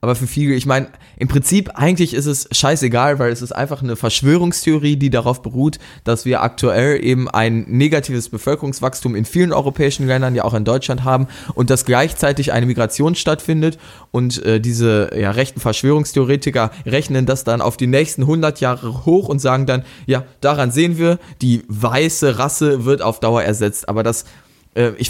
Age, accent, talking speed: 20-39, German, 175 wpm